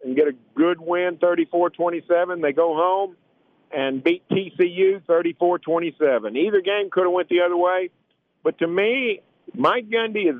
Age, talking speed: 50-69, 155 wpm